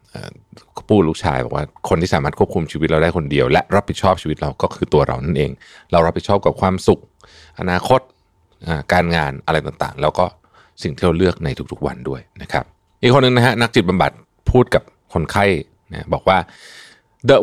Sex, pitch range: male, 80-100 Hz